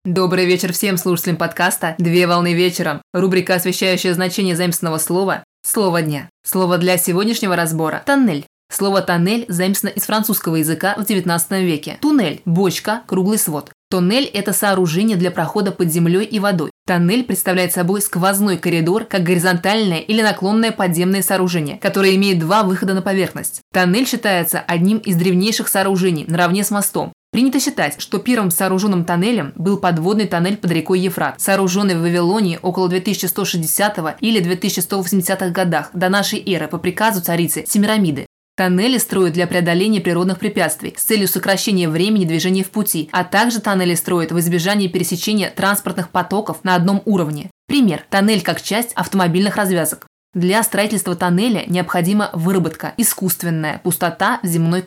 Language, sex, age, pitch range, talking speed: Russian, female, 20-39, 175-205 Hz, 150 wpm